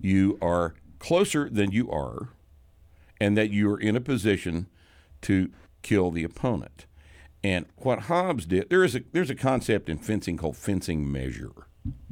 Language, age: English, 60-79